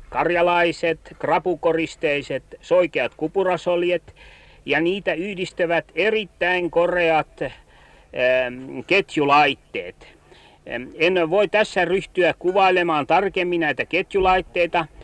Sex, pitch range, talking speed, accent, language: male, 155-185 Hz, 70 wpm, native, Finnish